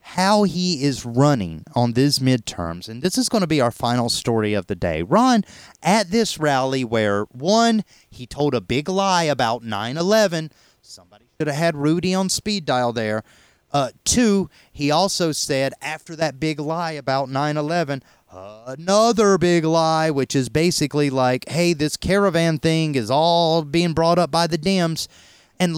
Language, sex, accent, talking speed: English, male, American, 170 wpm